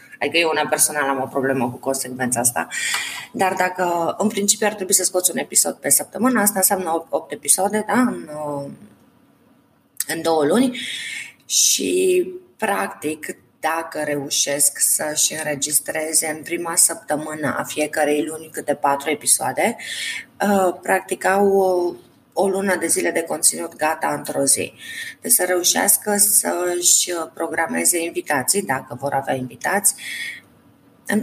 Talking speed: 130 wpm